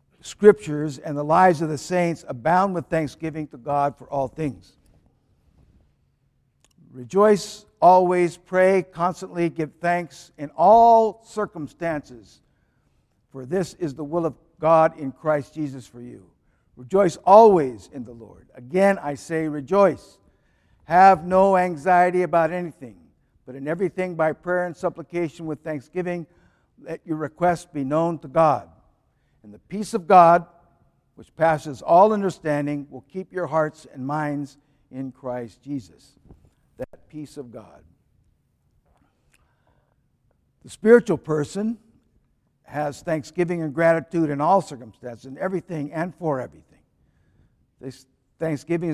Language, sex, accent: English, male, American